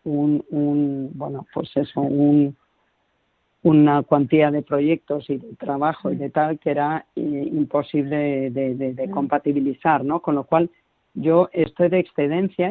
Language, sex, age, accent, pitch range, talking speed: Spanish, female, 40-59, Spanish, 140-170 Hz, 145 wpm